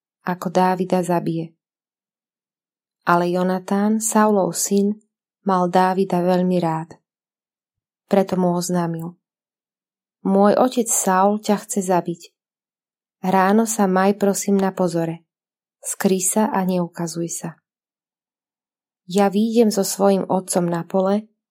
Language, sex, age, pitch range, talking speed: Slovak, female, 20-39, 180-205 Hz, 105 wpm